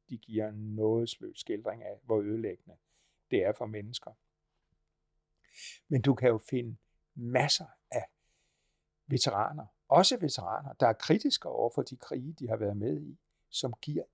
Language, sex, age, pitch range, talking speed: Danish, male, 60-79, 105-140 Hz, 150 wpm